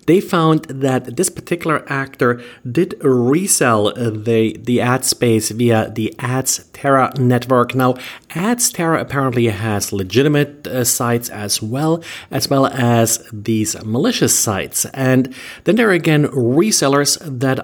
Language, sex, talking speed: English, male, 135 wpm